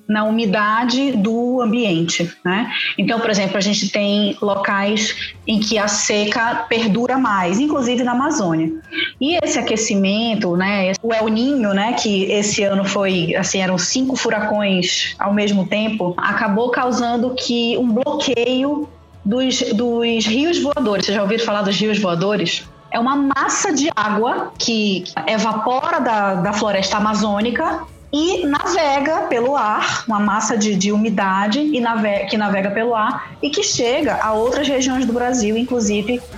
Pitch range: 200-250 Hz